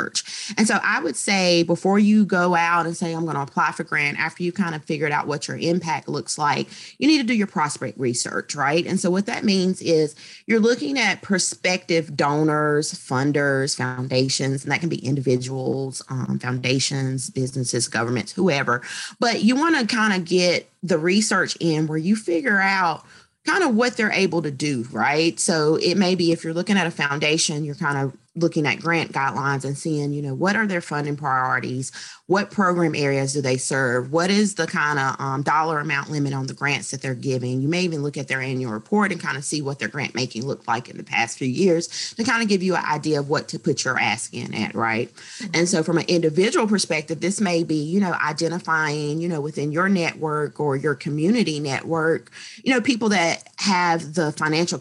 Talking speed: 210 wpm